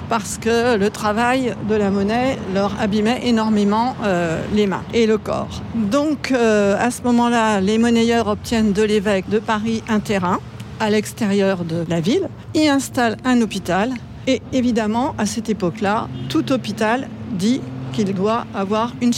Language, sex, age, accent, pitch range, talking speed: French, female, 50-69, French, 195-240 Hz, 160 wpm